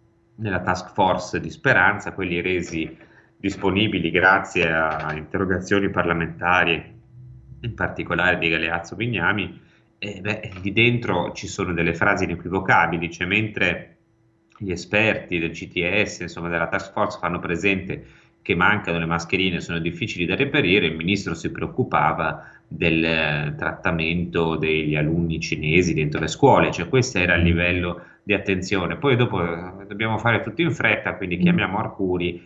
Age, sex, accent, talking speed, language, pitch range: 30-49, male, native, 140 wpm, Italian, 85-105 Hz